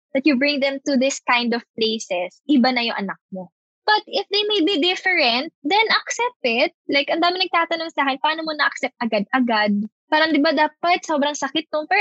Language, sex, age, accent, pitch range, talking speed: English, female, 20-39, Filipino, 230-295 Hz, 200 wpm